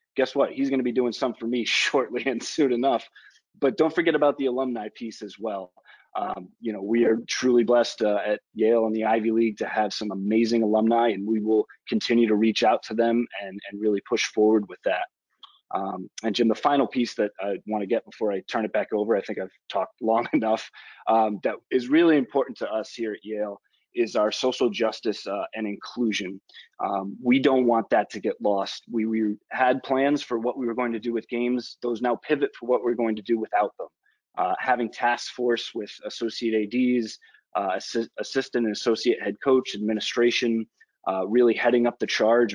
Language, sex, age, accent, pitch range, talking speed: English, male, 20-39, American, 110-125 Hz, 210 wpm